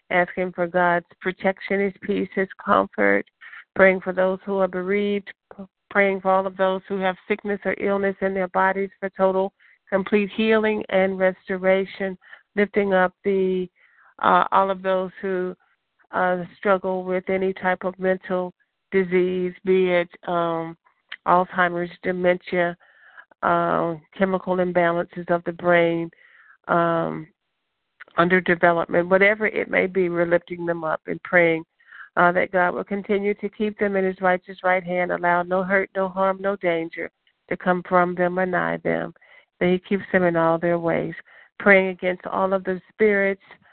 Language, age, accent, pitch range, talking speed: English, 50-69, American, 175-195 Hz, 155 wpm